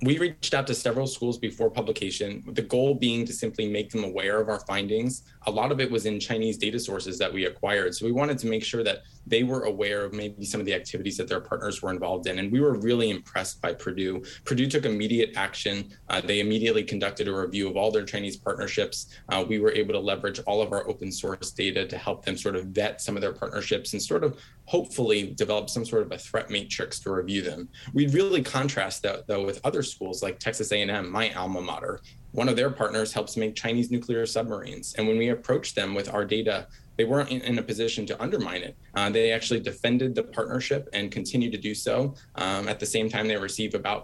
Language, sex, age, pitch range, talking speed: English, male, 20-39, 105-120 Hz, 230 wpm